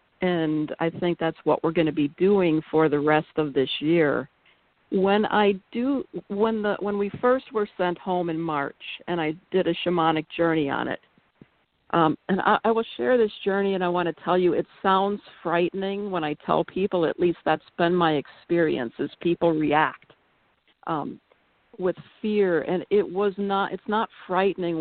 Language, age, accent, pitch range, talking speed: English, 50-69, American, 160-195 Hz, 180 wpm